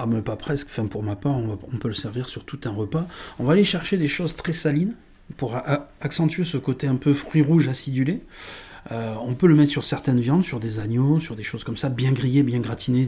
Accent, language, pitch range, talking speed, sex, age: French, French, 115-150 Hz, 250 wpm, male, 40-59